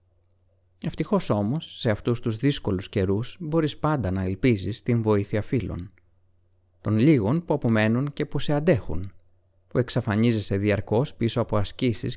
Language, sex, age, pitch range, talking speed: Greek, male, 30-49, 90-130 Hz, 140 wpm